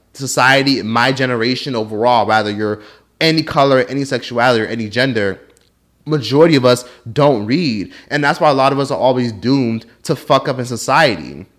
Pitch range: 115-145 Hz